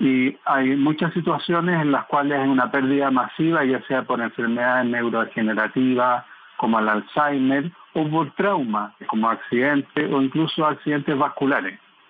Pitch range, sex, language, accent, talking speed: 130-160 Hz, male, Spanish, Argentinian, 140 wpm